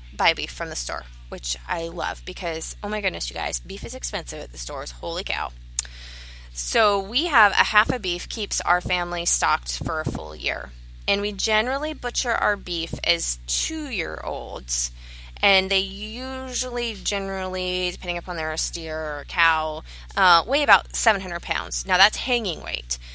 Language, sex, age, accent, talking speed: English, female, 20-39, American, 165 wpm